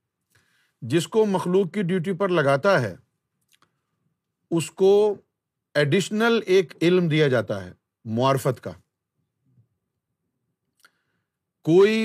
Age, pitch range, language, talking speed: 50-69, 130-180 Hz, Urdu, 95 wpm